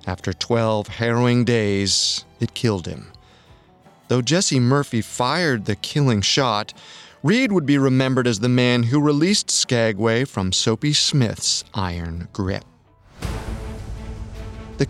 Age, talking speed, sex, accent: 30-49, 120 wpm, male, American